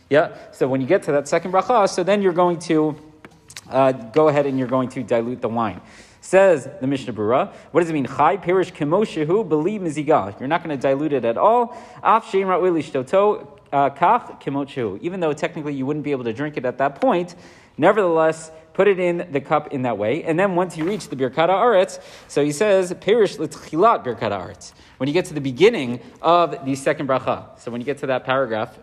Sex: male